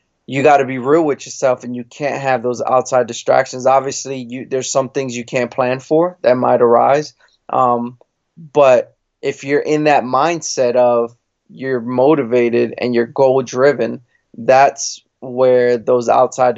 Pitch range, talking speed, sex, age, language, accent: 120-140 Hz, 155 wpm, male, 20-39, English, American